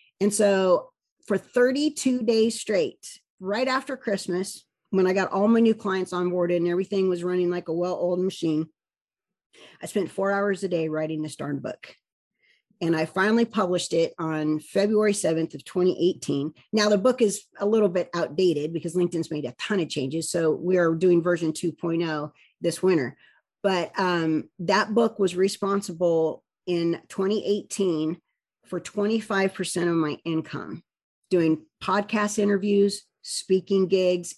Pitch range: 170-200 Hz